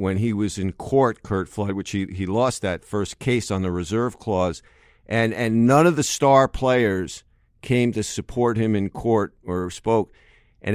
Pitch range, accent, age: 95-120 Hz, American, 50-69